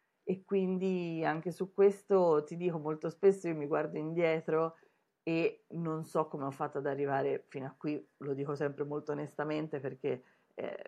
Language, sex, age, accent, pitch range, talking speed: Italian, female, 30-49, native, 145-185 Hz, 170 wpm